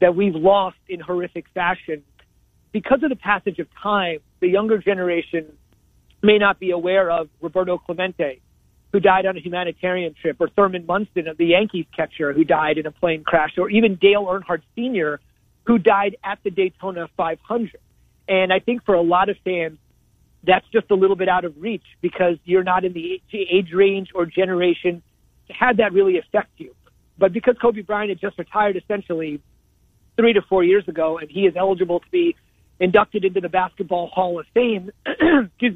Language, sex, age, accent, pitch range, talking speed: English, male, 40-59, American, 170-200 Hz, 185 wpm